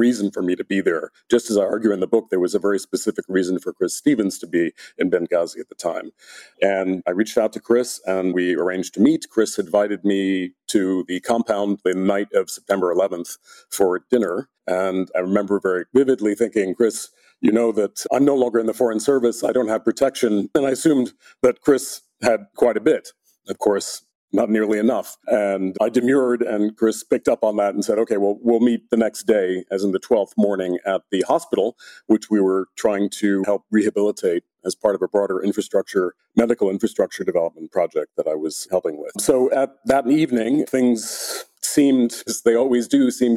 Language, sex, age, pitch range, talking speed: English, male, 40-59, 95-120 Hz, 205 wpm